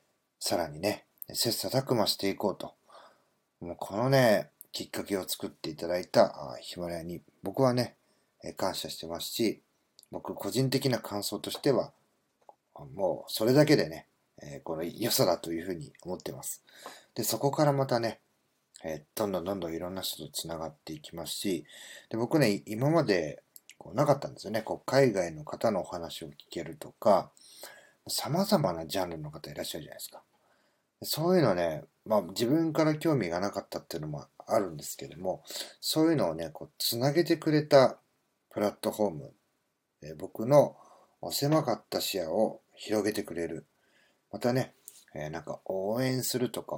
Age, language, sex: 40-59, Japanese, male